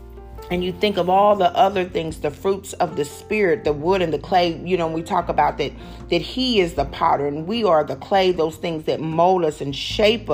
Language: English